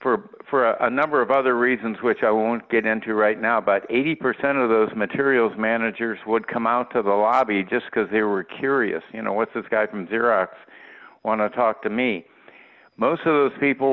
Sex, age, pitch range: male, 50-69, 105-130 Hz